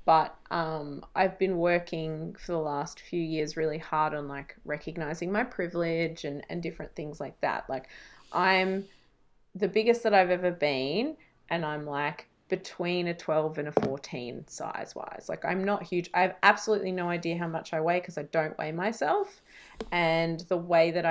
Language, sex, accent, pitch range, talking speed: English, female, Australian, 155-180 Hz, 180 wpm